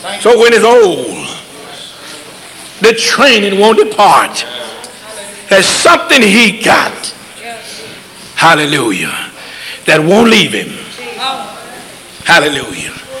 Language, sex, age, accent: English, male, 60-79, American